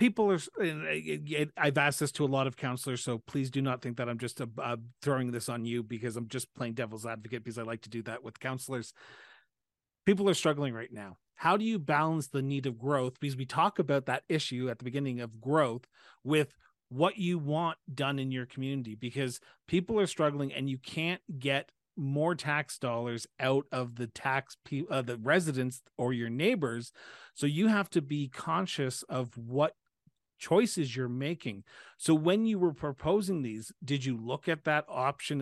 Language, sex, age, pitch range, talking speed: English, male, 40-59, 120-150 Hz, 190 wpm